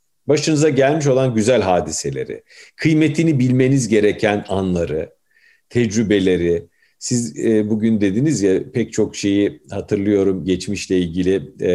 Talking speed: 110 wpm